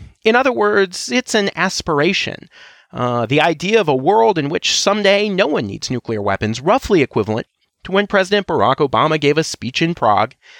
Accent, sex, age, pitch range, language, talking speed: American, male, 30-49, 125-205 Hz, English, 180 wpm